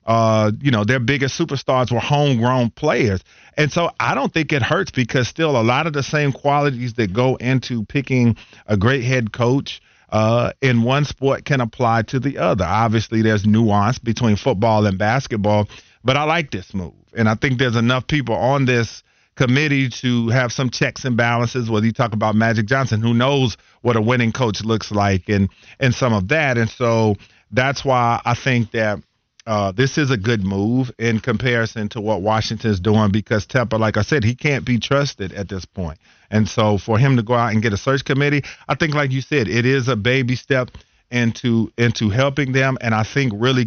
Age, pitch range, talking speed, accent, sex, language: 40-59, 110-130 Hz, 205 wpm, American, male, English